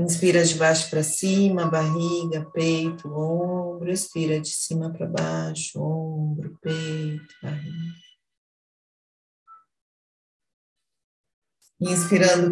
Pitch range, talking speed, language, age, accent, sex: 155-185 Hz, 80 wpm, Portuguese, 40-59, Brazilian, female